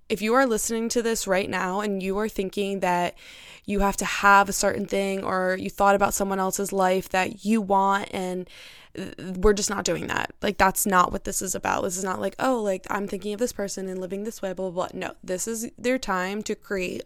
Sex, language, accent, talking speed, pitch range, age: female, English, American, 240 wpm, 190-225 Hz, 20-39